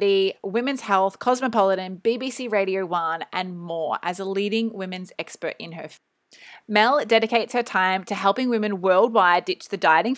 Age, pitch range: 20-39, 190-235 Hz